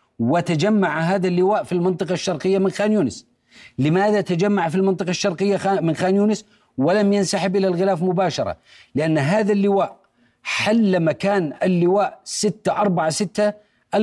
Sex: male